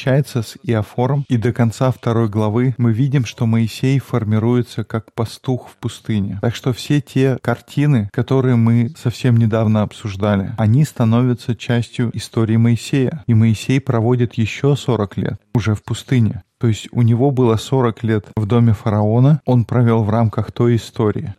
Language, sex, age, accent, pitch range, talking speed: Russian, male, 20-39, native, 110-125 Hz, 155 wpm